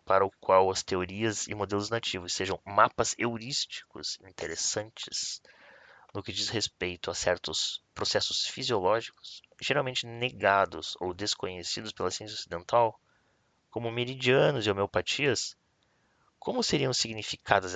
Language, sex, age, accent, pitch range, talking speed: Portuguese, male, 20-39, Brazilian, 95-120 Hz, 115 wpm